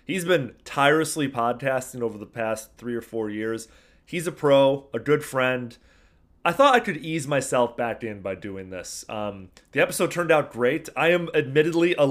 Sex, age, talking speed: male, 30-49, 190 wpm